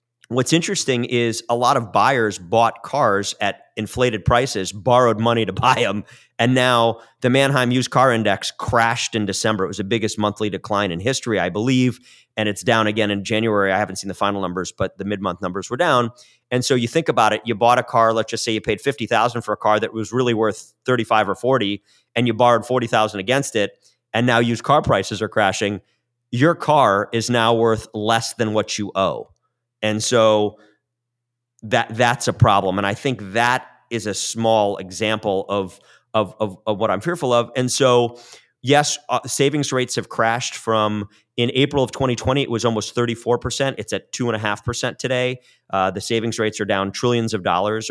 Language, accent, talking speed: English, American, 200 wpm